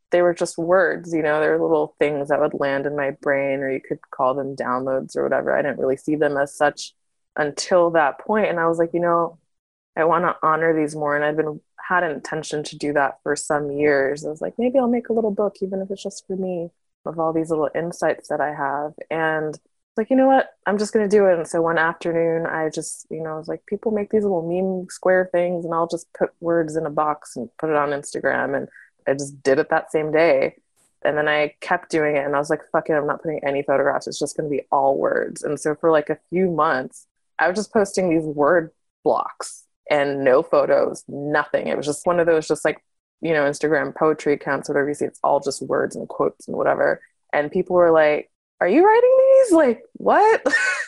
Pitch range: 150-190 Hz